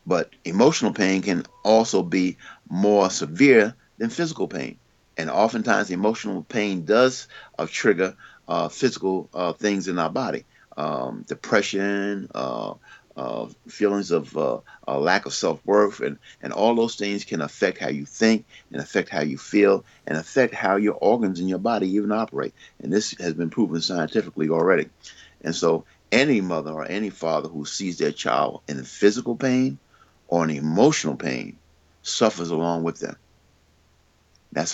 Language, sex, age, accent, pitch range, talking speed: English, male, 50-69, American, 80-105 Hz, 155 wpm